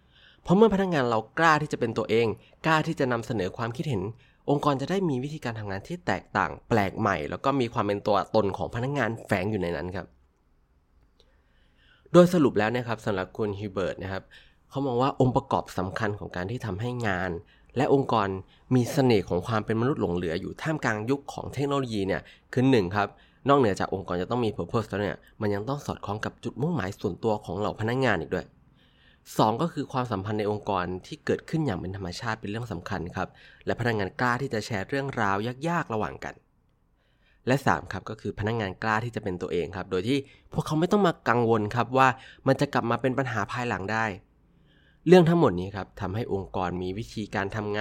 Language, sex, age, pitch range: Thai, male, 20-39, 95-135 Hz